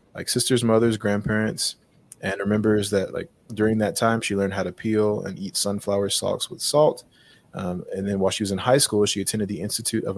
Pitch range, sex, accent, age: 95-110 Hz, male, American, 20-39